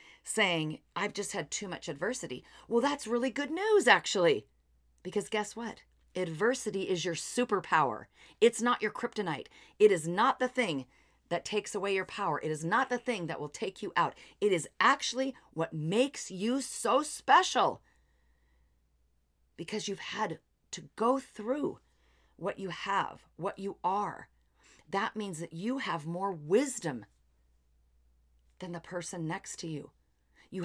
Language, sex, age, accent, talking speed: English, female, 40-59, American, 155 wpm